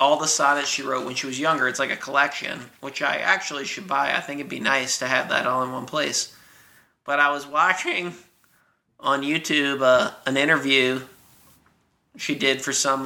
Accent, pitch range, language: American, 135-170 Hz, English